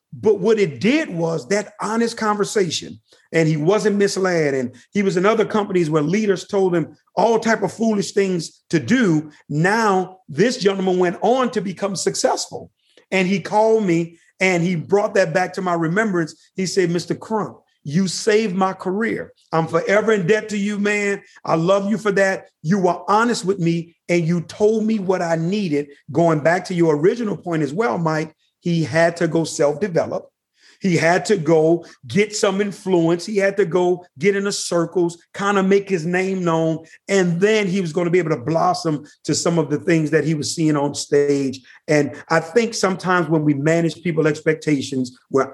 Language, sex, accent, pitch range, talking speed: English, male, American, 155-200 Hz, 195 wpm